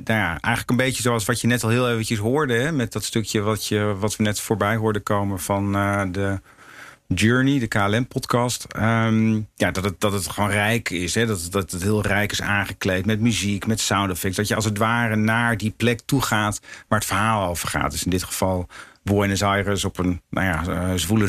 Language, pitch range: Dutch, 100-125 Hz